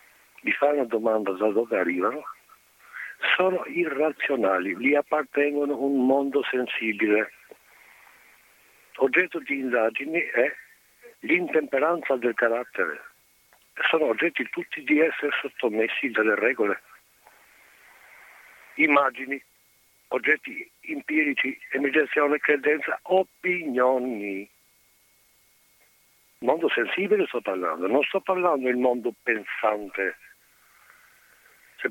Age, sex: 60-79, male